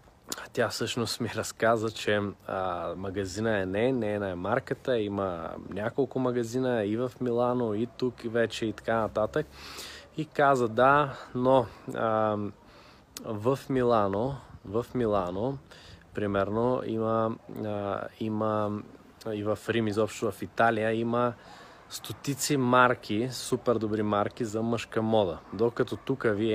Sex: male